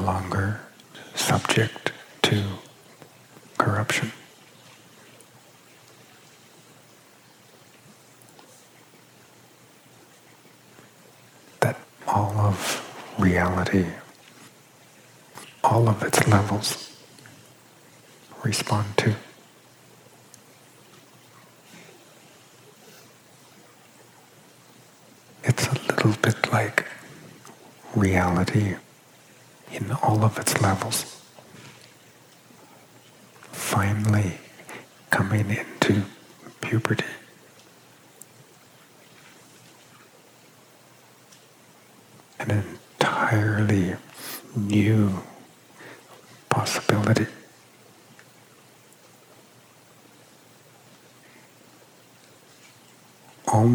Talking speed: 35 wpm